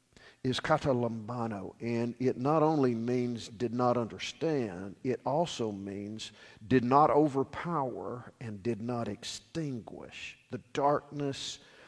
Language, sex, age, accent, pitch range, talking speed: English, male, 50-69, American, 105-135 Hz, 110 wpm